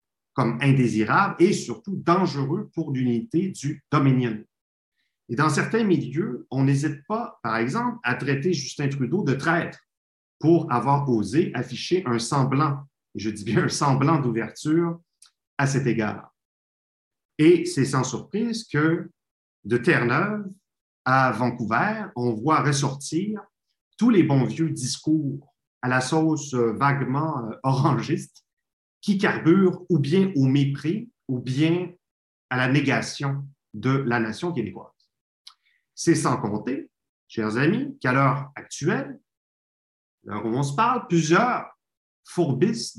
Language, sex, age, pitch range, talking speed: French, male, 50-69, 120-170 Hz, 125 wpm